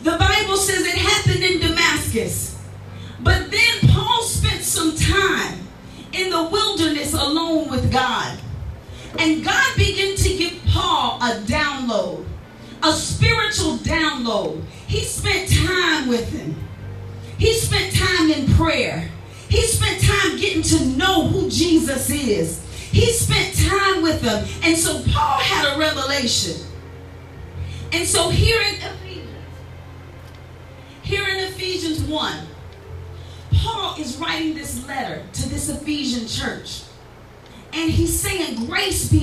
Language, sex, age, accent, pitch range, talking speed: English, female, 40-59, American, 270-375 Hz, 125 wpm